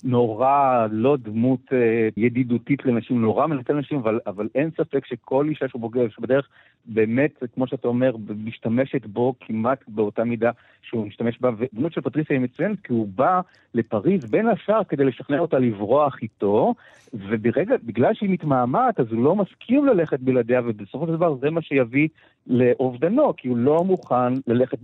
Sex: male